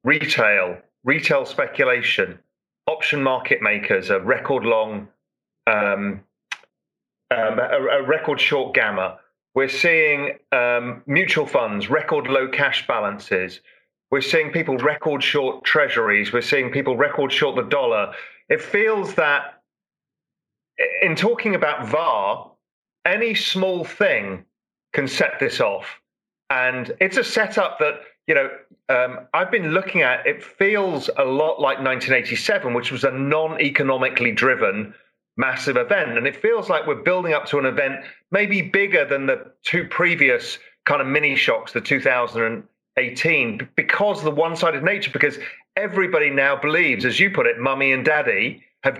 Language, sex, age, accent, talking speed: English, male, 40-59, British, 150 wpm